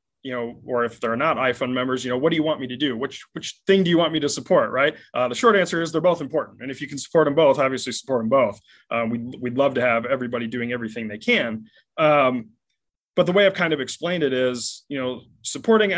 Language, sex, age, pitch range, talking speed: English, male, 20-39, 120-150 Hz, 265 wpm